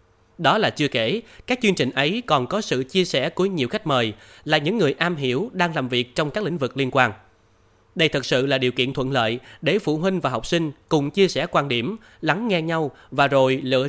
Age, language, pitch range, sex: 20-39, Vietnamese, 120-175 Hz, male